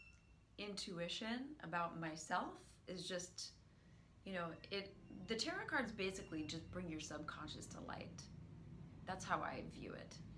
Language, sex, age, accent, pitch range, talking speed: English, female, 30-49, American, 160-200 Hz, 135 wpm